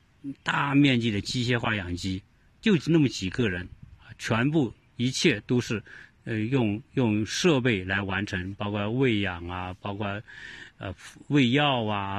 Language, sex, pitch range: Chinese, male, 100-140 Hz